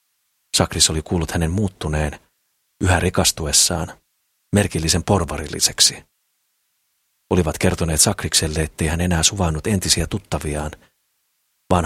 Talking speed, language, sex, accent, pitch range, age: 95 wpm, Finnish, male, native, 80-95 Hz, 40-59